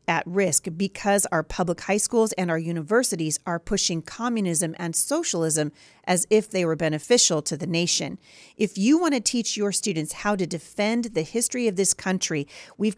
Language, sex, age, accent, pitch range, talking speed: English, female, 40-59, American, 165-220 Hz, 180 wpm